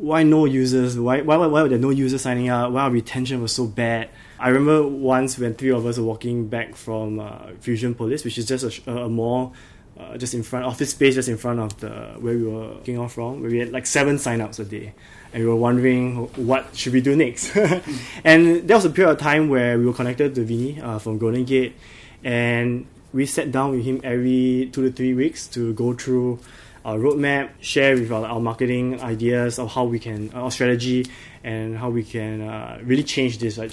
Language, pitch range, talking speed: English, 115-130 Hz, 225 wpm